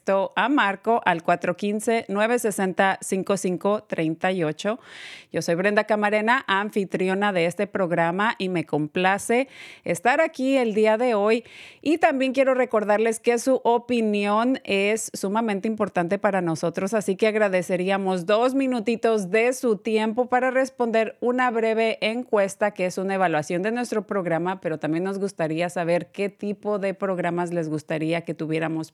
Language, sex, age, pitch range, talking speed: Spanish, female, 30-49, 170-220 Hz, 135 wpm